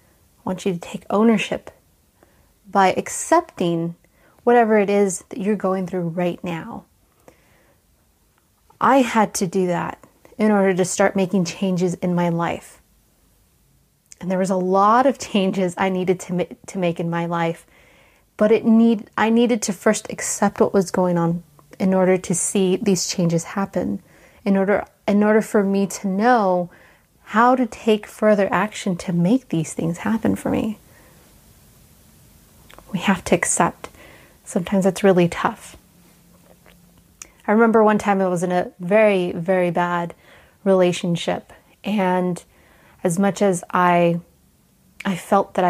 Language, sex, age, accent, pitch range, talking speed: English, female, 30-49, American, 180-210 Hz, 150 wpm